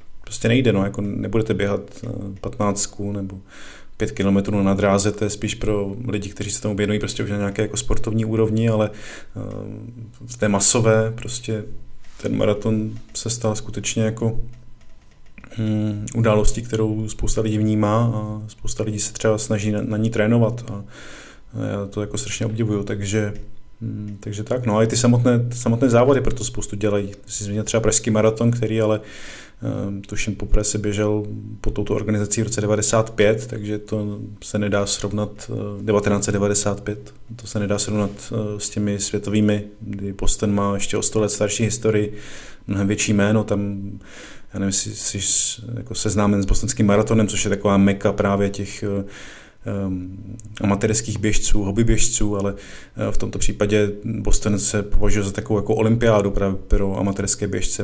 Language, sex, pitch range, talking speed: Czech, male, 100-110 Hz, 160 wpm